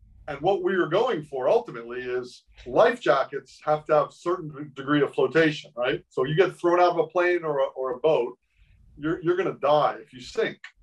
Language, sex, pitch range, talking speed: English, male, 135-185 Hz, 210 wpm